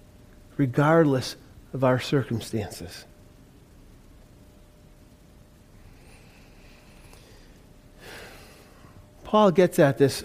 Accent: American